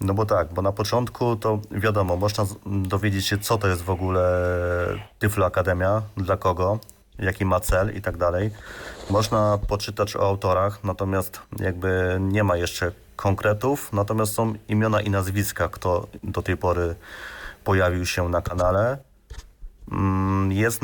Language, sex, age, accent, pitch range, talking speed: Polish, male, 30-49, native, 90-105 Hz, 145 wpm